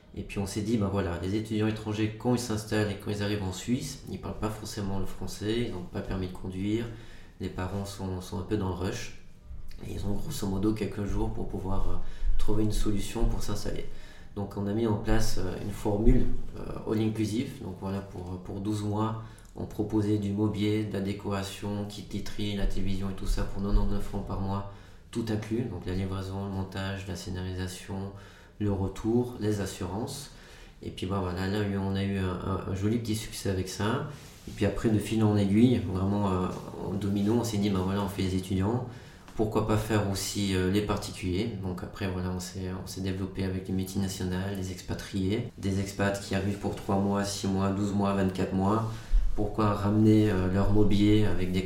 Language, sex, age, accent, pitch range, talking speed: French, male, 30-49, French, 95-105 Hz, 210 wpm